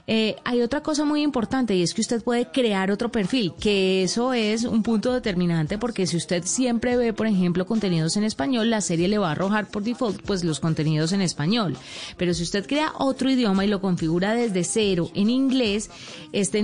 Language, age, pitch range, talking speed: Spanish, 30-49, 185-240 Hz, 205 wpm